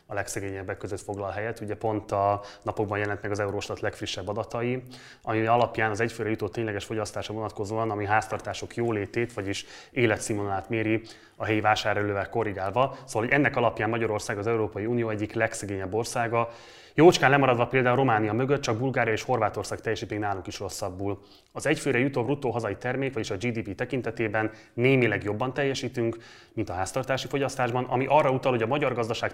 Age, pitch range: 20-39, 105-120 Hz